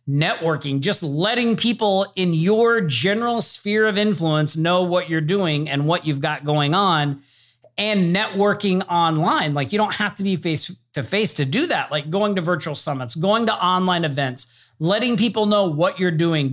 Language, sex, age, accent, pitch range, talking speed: English, male, 40-59, American, 145-205 Hz, 180 wpm